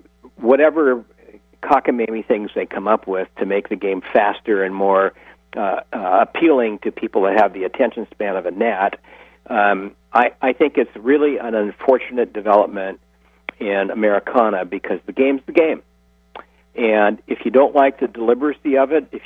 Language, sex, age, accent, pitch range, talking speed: English, male, 60-79, American, 95-130 Hz, 160 wpm